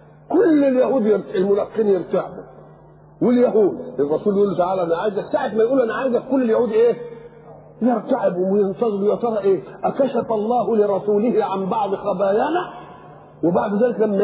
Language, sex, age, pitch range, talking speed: English, male, 40-59, 180-230 Hz, 130 wpm